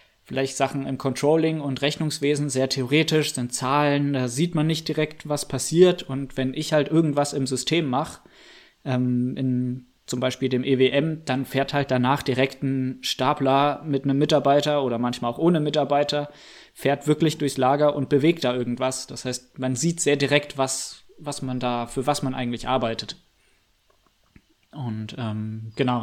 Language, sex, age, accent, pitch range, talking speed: German, male, 20-39, German, 130-150 Hz, 165 wpm